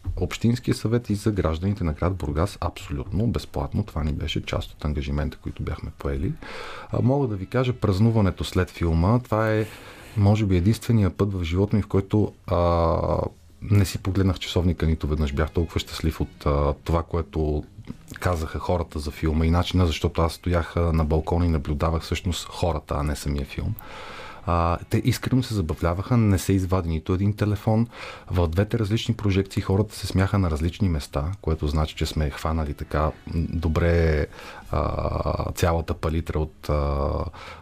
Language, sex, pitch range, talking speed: Bulgarian, male, 80-105 Hz, 165 wpm